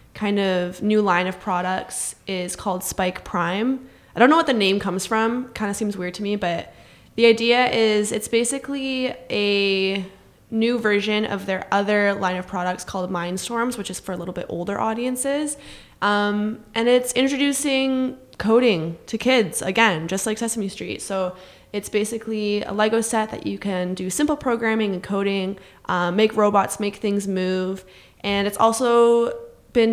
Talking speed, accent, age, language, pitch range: 170 wpm, American, 20-39, English, 185-225 Hz